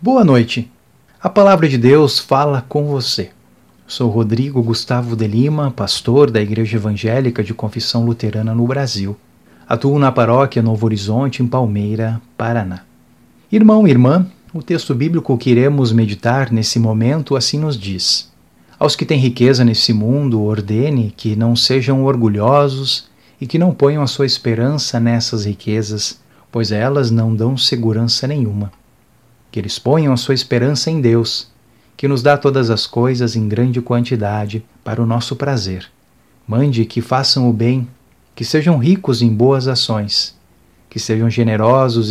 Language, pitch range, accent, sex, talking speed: Portuguese, 110-135 Hz, Brazilian, male, 150 wpm